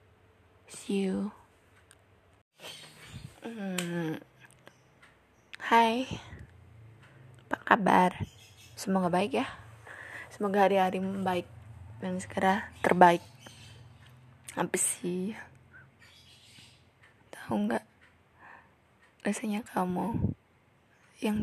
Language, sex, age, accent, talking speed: Indonesian, female, 20-39, native, 55 wpm